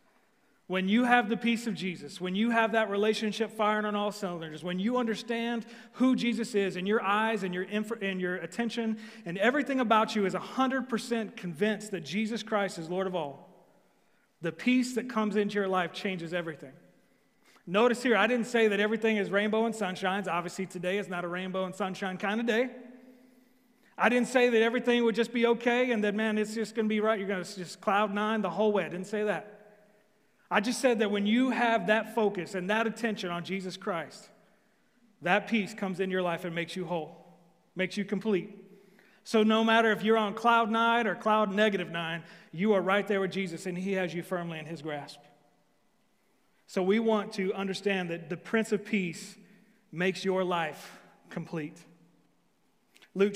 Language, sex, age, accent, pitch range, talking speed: English, male, 40-59, American, 185-225 Hz, 200 wpm